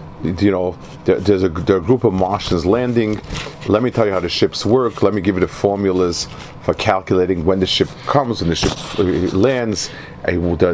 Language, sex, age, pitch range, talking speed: English, male, 40-59, 90-125 Hz, 195 wpm